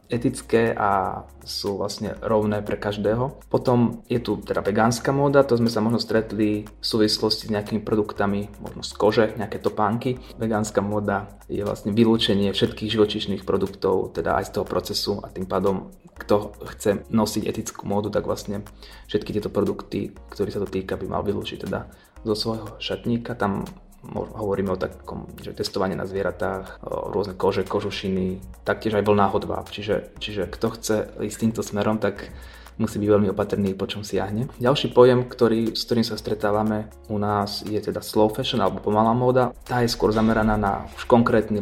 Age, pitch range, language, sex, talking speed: 20-39, 100-110 Hz, Slovak, male, 170 wpm